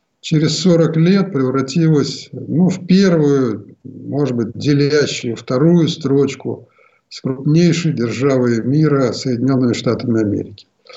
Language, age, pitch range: Russian, 50-69, 120-160 Hz